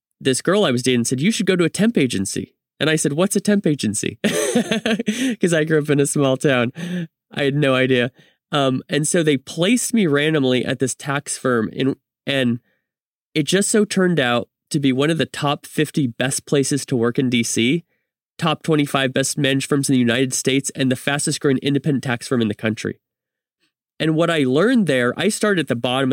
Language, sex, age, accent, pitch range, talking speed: English, male, 30-49, American, 125-160 Hz, 210 wpm